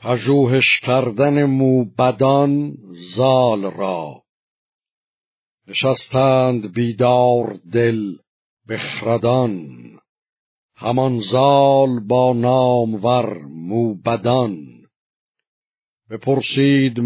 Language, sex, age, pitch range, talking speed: Persian, male, 60-79, 120-135 Hz, 55 wpm